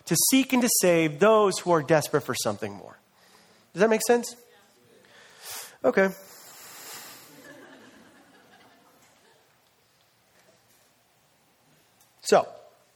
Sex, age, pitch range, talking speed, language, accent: male, 40-59, 140-210 Hz, 85 wpm, English, American